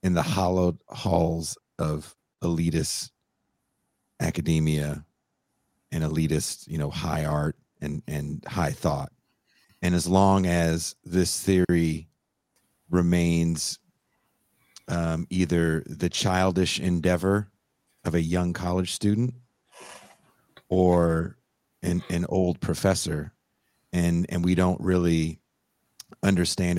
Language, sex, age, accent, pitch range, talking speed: English, male, 40-59, American, 80-95 Hz, 100 wpm